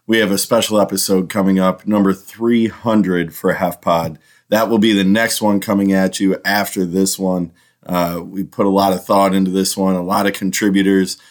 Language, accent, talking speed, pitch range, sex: English, American, 200 wpm, 90-100 Hz, male